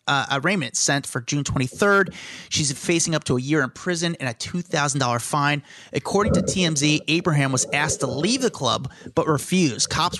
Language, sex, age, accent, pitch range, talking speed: English, male, 30-49, American, 130-165 Hz, 180 wpm